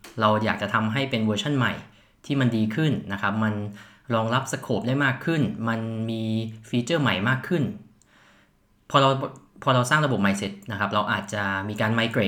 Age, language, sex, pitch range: 20-39, Thai, male, 100-130 Hz